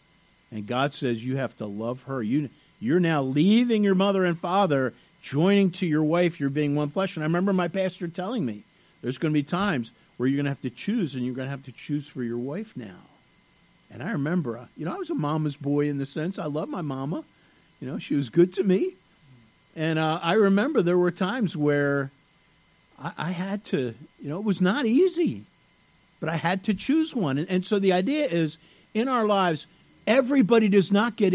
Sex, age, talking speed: male, 50-69, 220 wpm